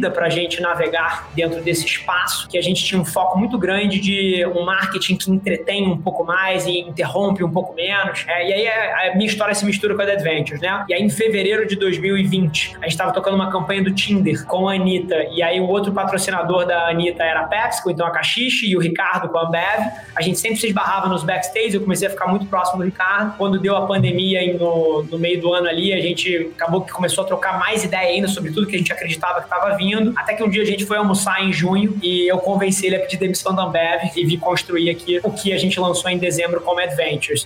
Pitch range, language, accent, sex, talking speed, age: 175-195 Hz, Portuguese, Brazilian, male, 245 wpm, 20-39